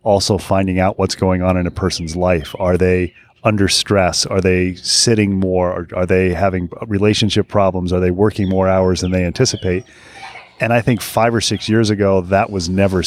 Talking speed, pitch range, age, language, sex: 195 wpm, 90-100 Hz, 30-49, English, male